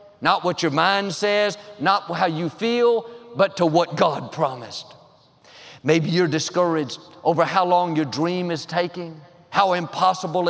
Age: 50-69